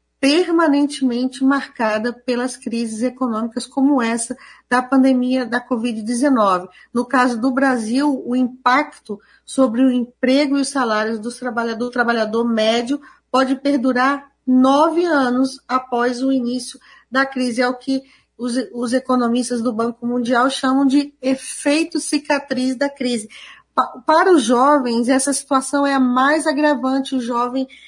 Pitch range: 245-290 Hz